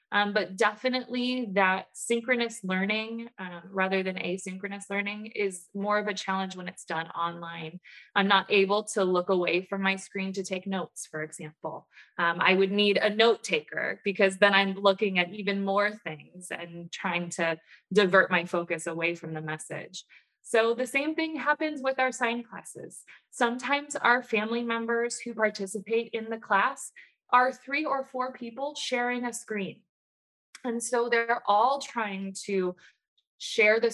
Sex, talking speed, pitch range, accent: female, 165 wpm, 190-230 Hz, American